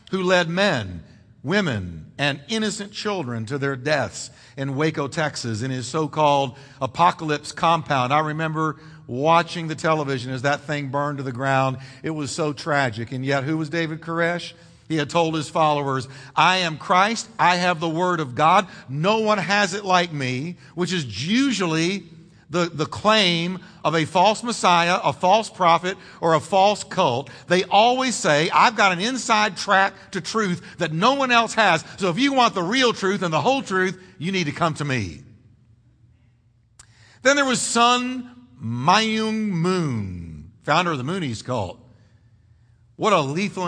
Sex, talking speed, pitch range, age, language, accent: male, 170 wpm, 135-190 Hz, 50-69, English, American